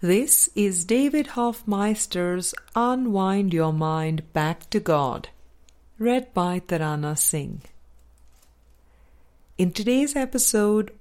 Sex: female